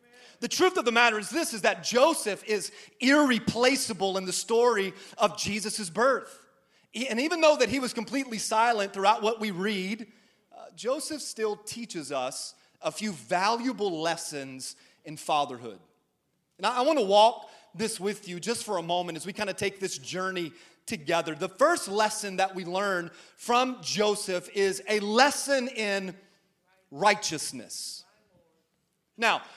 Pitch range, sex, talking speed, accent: 195-245 Hz, male, 150 wpm, American